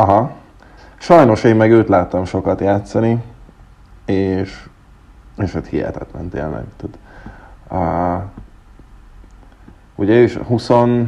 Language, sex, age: Hungarian, male, 30-49